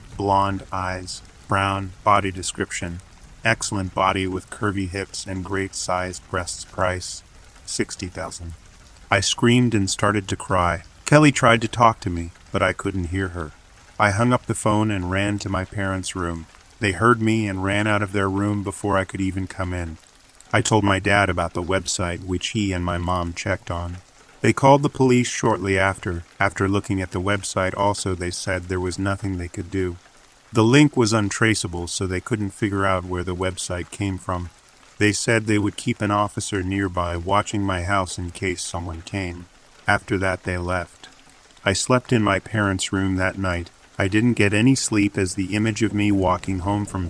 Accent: American